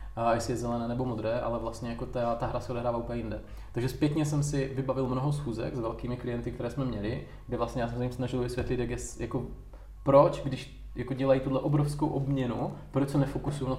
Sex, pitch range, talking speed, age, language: male, 115-130 Hz, 220 wpm, 20-39, Czech